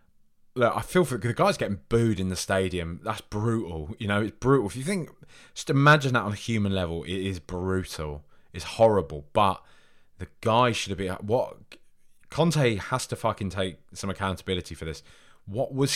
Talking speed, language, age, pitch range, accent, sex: 190 wpm, English, 20-39, 80-115 Hz, British, male